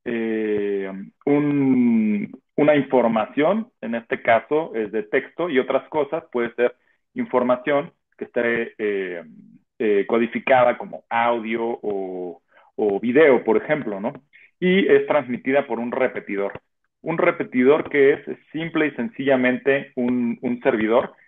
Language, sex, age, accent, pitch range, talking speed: Spanish, male, 40-59, Mexican, 115-150 Hz, 125 wpm